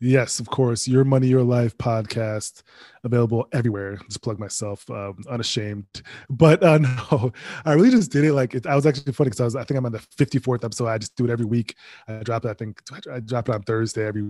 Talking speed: 235 wpm